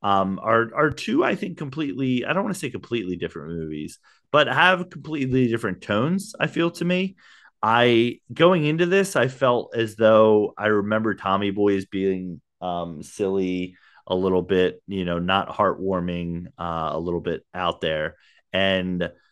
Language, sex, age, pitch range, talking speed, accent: English, male, 30-49, 90-130 Hz, 170 wpm, American